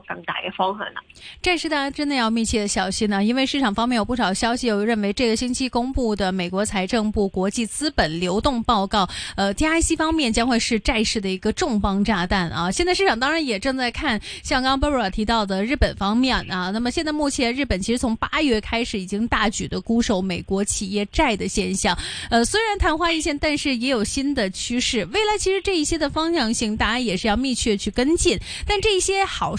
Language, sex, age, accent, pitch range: Chinese, female, 20-39, native, 200-275 Hz